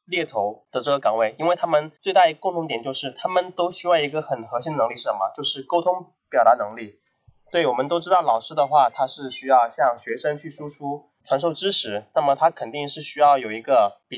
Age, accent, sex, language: 20-39, native, male, Chinese